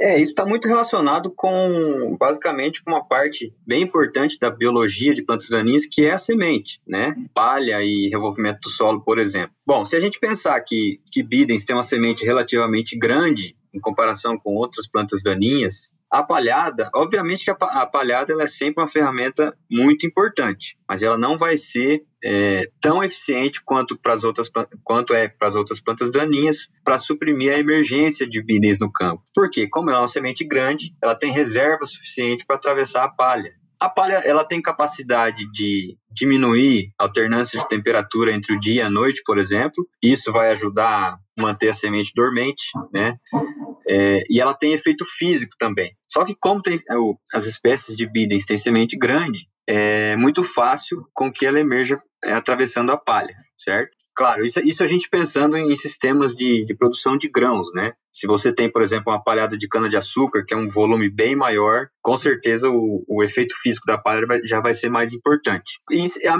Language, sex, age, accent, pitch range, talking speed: Portuguese, male, 20-39, Brazilian, 110-155 Hz, 185 wpm